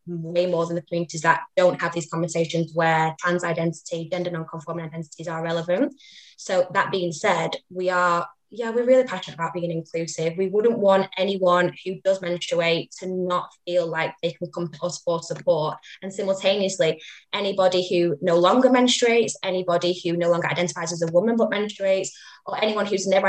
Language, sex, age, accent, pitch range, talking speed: English, female, 20-39, British, 170-190 Hz, 180 wpm